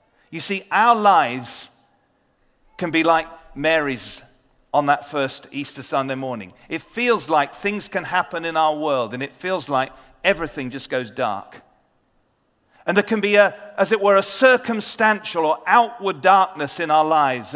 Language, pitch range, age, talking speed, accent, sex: English, 145-195 Hz, 40-59, 160 wpm, British, male